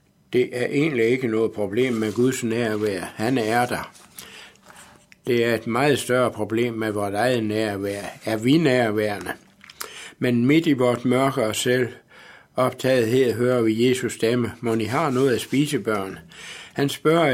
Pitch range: 110-135 Hz